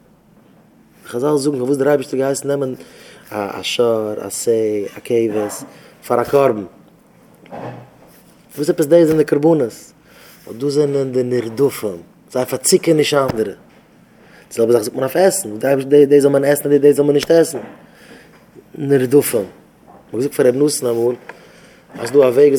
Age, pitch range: 30-49, 130-145 Hz